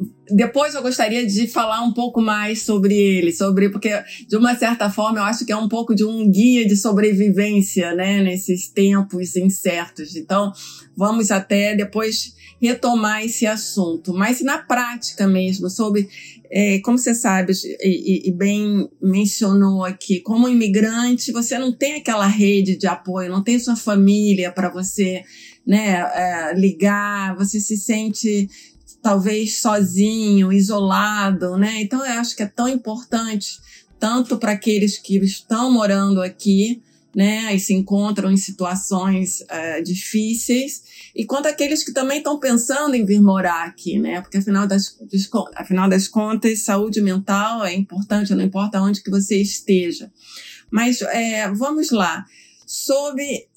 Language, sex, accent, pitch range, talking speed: Portuguese, female, Brazilian, 195-230 Hz, 150 wpm